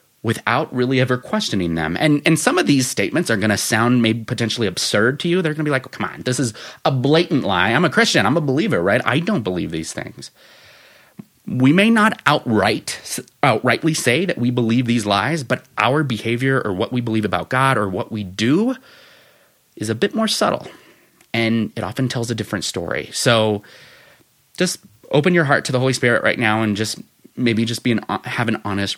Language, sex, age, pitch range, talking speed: English, male, 30-49, 105-135 Hz, 210 wpm